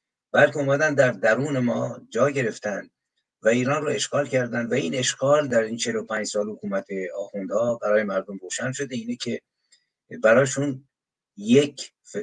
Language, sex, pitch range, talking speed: Persian, male, 115-150 Hz, 140 wpm